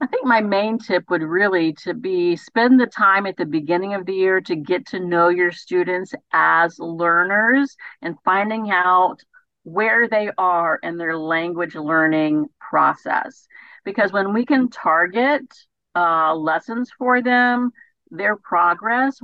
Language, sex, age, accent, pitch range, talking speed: English, female, 50-69, American, 180-260 Hz, 150 wpm